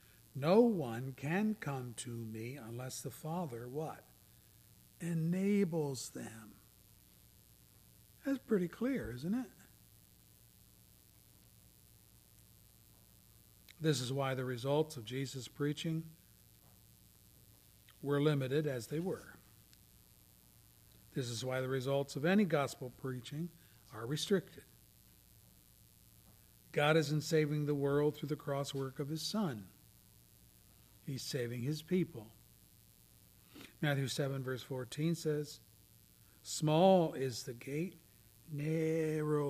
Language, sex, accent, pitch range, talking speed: English, male, American, 105-155 Hz, 100 wpm